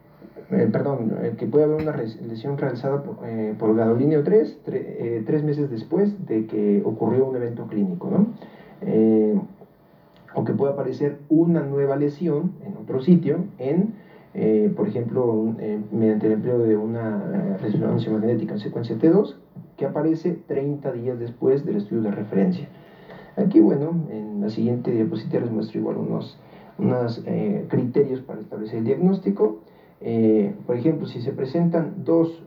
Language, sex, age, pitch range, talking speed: English, male, 40-59, 115-175 Hz, 165 wpm